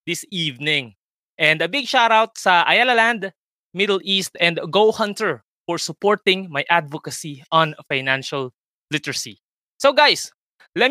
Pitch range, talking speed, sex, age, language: 150-185 Hz, 140 wpm, male, 20-39, Filipino